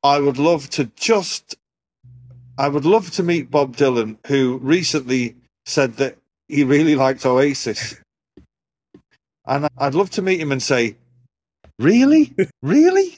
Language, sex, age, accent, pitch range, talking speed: English, male, 40-59, British, 130-195 Hz, 130 wpm